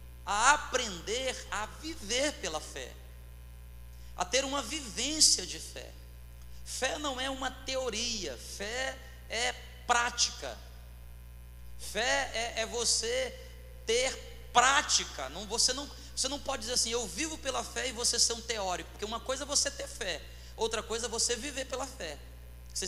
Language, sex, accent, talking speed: Portuguese, male, Brazilian, 145 wpm